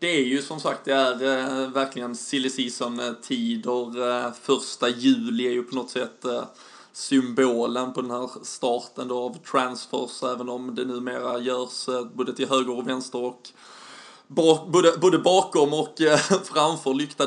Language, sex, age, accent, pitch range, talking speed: Swedish, male, 20-39, native, 125-155 Hz, 170 wpm